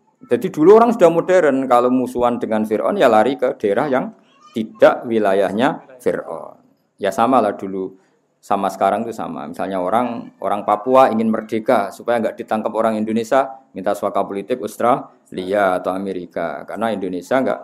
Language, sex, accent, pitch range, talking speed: Indonesian, male, native, 105-145 Hz, 150 wpm